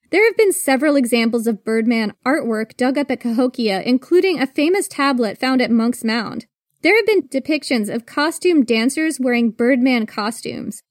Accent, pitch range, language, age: American, 230-285 Hz, English, 20-39